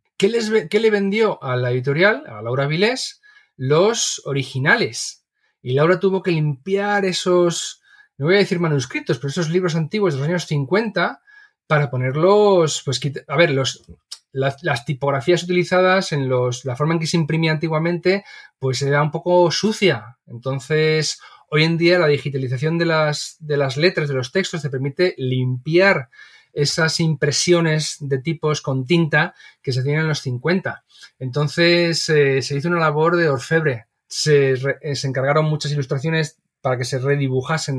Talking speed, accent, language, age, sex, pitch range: 165 wpm, Spanish, Spanish, 30-49, male, 140-180 Hz